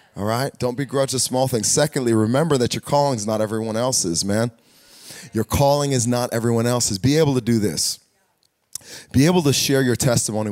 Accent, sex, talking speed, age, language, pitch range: American, male, 195 wpm, 30-49, English, 95-145 Hz